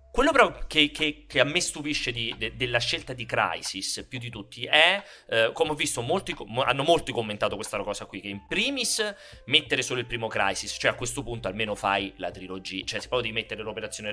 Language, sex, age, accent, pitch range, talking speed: Italian, male, 30-49, native, 110-150 Hz, 220 wpm